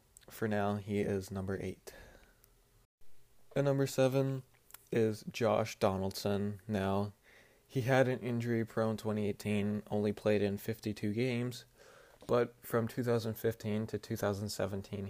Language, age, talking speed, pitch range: English, 20-39, 110 wpm, 100-115 Hz